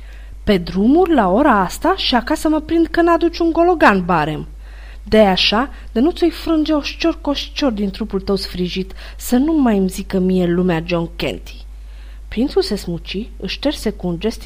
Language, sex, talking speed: Romanian, female, 185 wpm